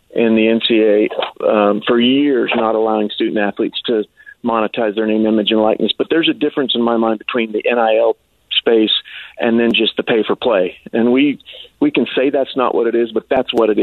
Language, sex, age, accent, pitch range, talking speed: English, male, 40-59, American, 110-145 Hz, 215 wpm